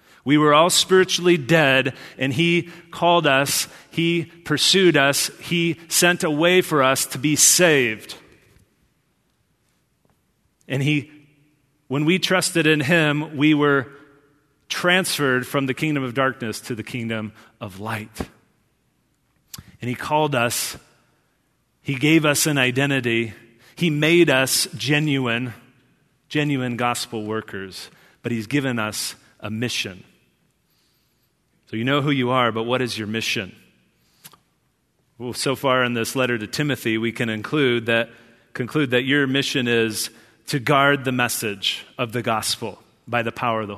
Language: English